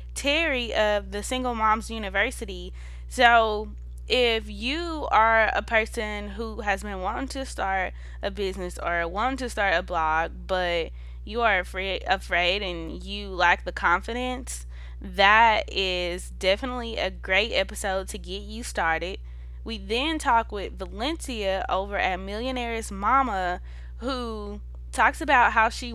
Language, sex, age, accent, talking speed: English, female, 20-39, American, 140 wpm